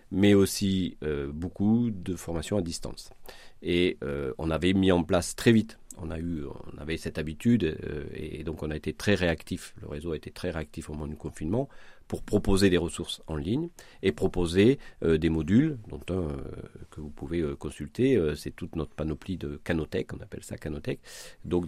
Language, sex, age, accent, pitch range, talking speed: French, male, 40-59, French, 75-105 Hz, 200 wpm